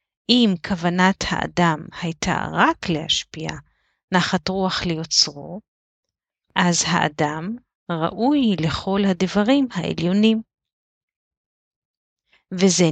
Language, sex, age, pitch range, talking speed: Hebrew, female, 30-49, 165-195 Hz, 75 wpm